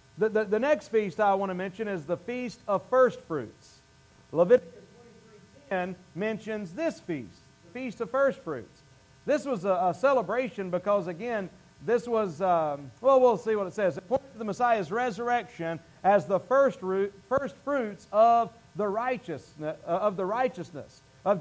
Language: English